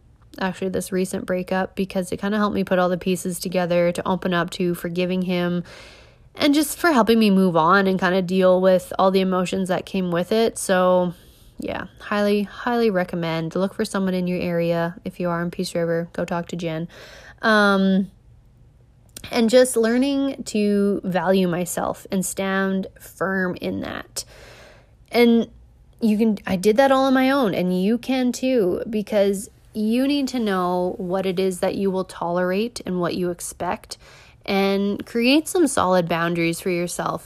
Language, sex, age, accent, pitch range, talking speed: English, female, 20-39, American, 180-215 Hz, 175 wpm